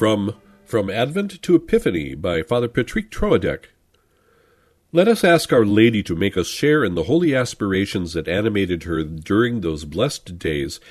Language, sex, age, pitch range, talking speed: English, male, 50-69, 85-125 Hz, 160 wpm